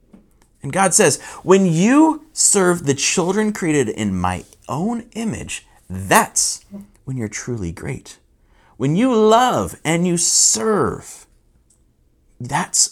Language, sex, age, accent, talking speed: English, male, 30-49, American, 115 wpm